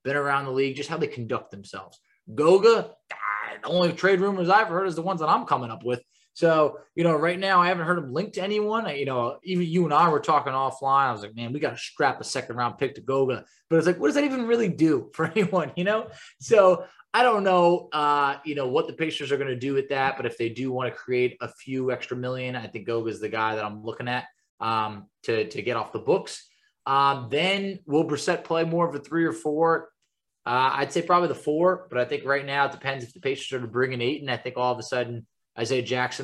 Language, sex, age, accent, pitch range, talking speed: English, male, 20-39, American, 125-170 Hz, 260 wpm